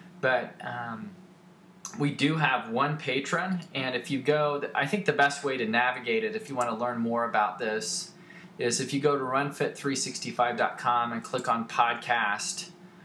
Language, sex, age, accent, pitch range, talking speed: English, male, 20-39, American, 120-175 Hz, 170 wpm